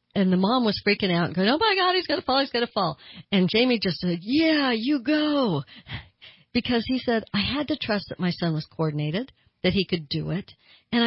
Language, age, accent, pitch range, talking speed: English, 60-79, American, 165-210 Hz, 240 wpm